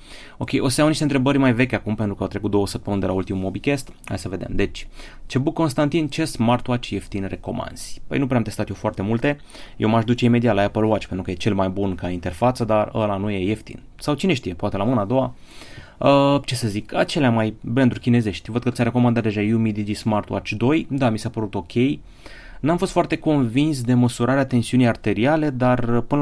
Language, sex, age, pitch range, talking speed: Romanian, male, 30-49, 105-130 Hz, 225 wpm